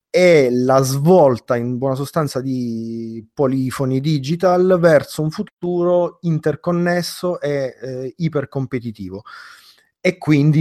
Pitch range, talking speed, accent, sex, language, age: 115-145 Hz, 100 wpm, native, male, Italian, 30-49